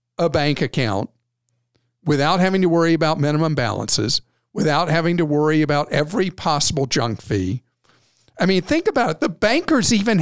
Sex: male